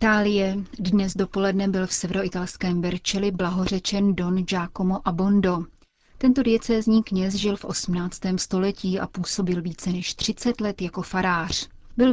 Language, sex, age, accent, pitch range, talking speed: Czech, female, 30-49, native, 180-205 Hz, 135 wpm